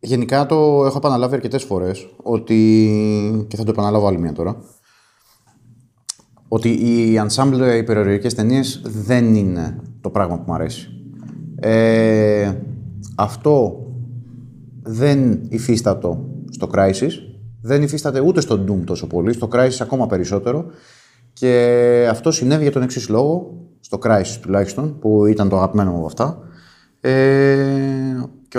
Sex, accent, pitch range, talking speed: male, native, 105-140 Hz, 125 wpm